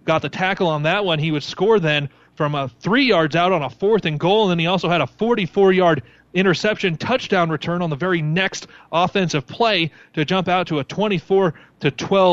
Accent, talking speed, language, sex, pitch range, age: American, 210 wpm, English, male, 150-190 Hz, 30-49